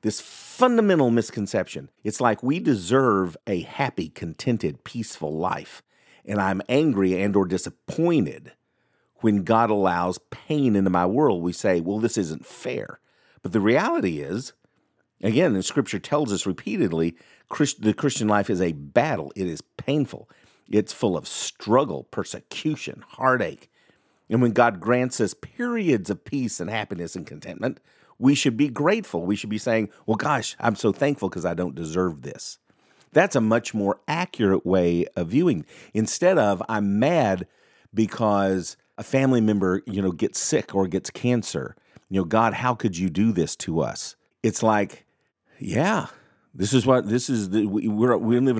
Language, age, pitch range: English, 50-69, 95-125 Hz